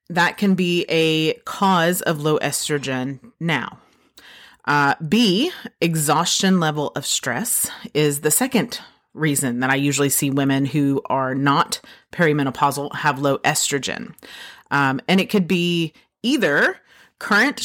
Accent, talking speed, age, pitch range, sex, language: American, 130 wpm, 30-49, 140-175 Hz, female, English